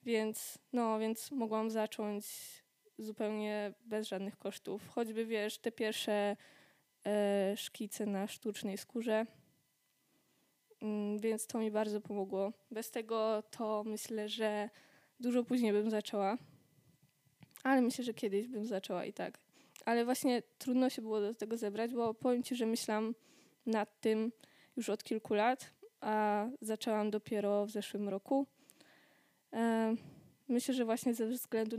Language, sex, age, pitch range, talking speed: Polish, female, 10-29, 210-230 Hz, 135 wpm